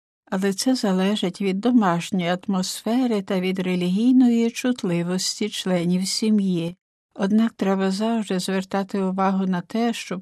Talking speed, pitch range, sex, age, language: 115 wpm, 185-230 Hz, female, 60-79, Ukrainian